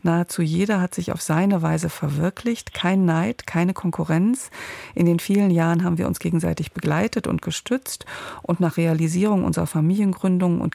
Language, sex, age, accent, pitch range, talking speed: German, female, 50-69, German, 160-185 Hz, 160 wpm